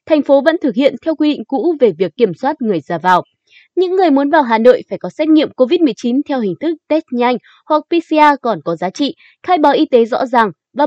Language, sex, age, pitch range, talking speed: Vietnamese, female, 20-39, 220-315 Hz, 250 wpm